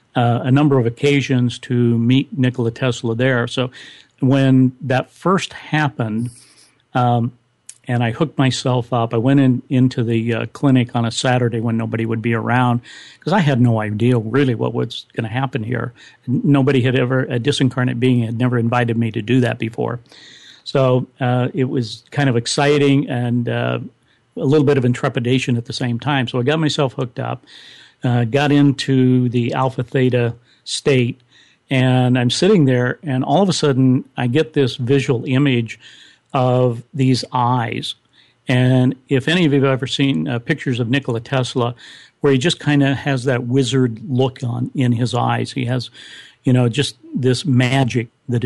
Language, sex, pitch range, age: English, male, 120-135 Hz, 50-69